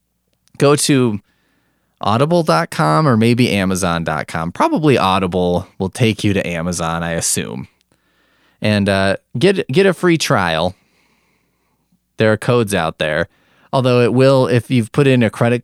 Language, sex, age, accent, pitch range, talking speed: English, male, 20-39, American, 80-130 Hz, 140 wpm